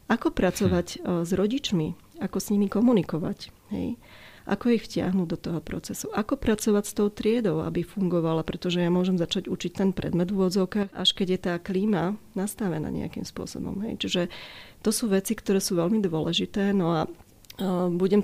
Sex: female